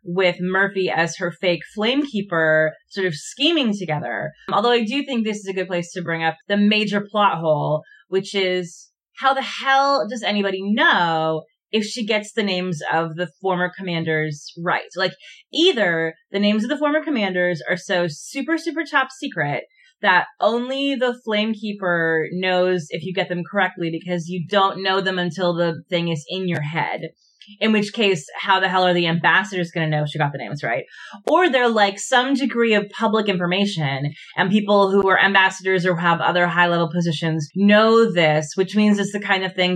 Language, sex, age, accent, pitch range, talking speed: English, female, 20-39, American, 170-215 Hz, 190 wpm